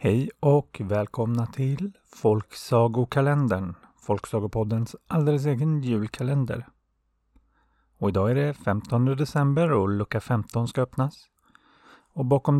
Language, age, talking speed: Swedish, 30-49, 105 wpm